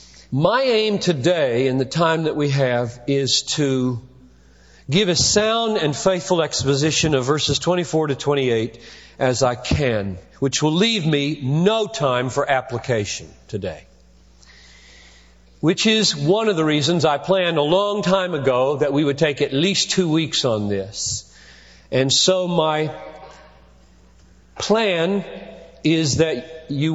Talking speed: 140 wpm